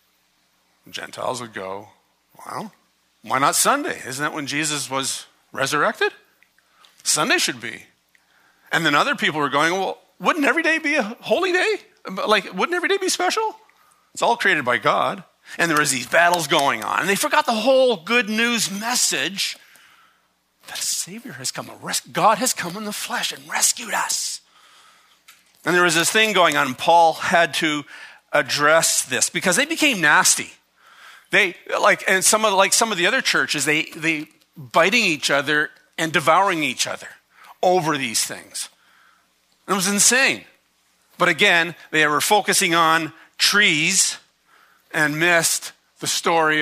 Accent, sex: American, male